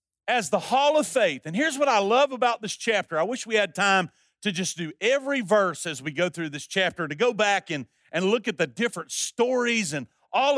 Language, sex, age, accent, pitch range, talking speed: English, male, 50-69, American, 145-235 Hz, 235 wpm